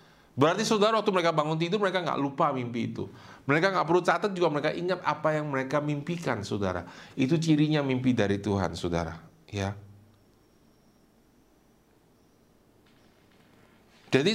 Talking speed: 130 wpm